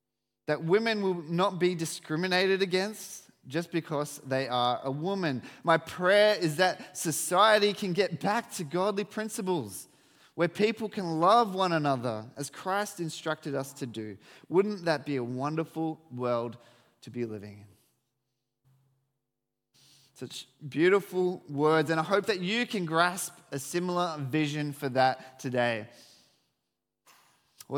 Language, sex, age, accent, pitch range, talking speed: English, male, 20-39, Australian, 130-180 Hz, 135 wpm